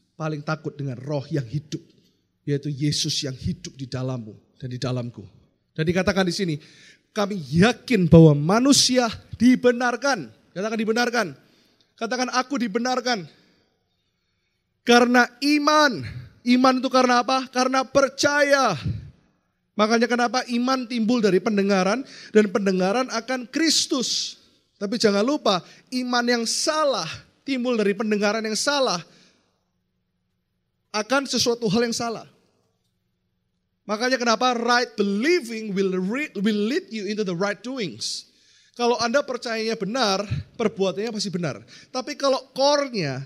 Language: Indonesian